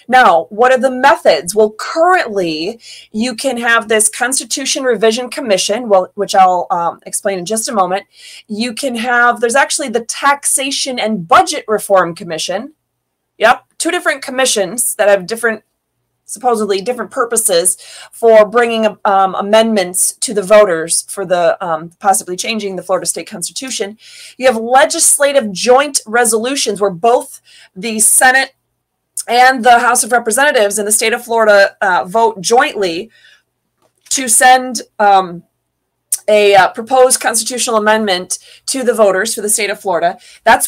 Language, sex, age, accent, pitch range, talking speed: English, female, 30-49, American, 195-255 Hz, 145 wpm